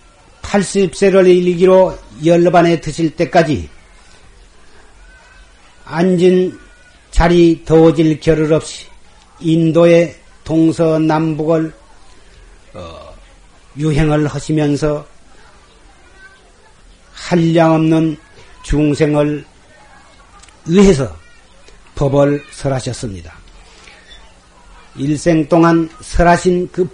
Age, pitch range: 40-59, 145-185 Hz